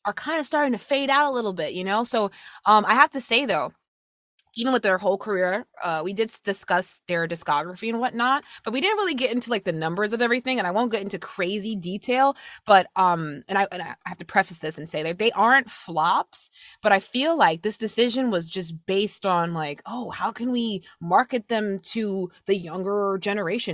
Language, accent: English, American